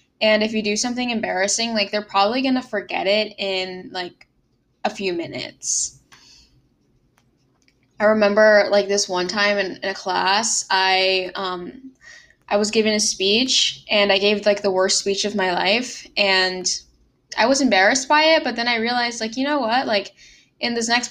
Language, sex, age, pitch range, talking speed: English, female, 10-29, 190-230 Hz, 175 wpm